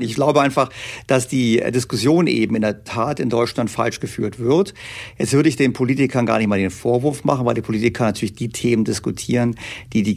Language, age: German, 50-69